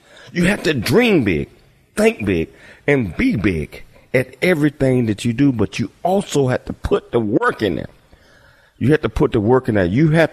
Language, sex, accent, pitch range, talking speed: English, male, American, 75-120 Hz, 205 wpm